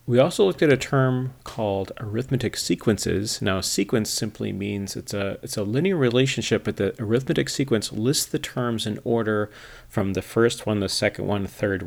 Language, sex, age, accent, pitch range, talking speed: English, male, 40-59, American, 95-125 Hz, 185 wpm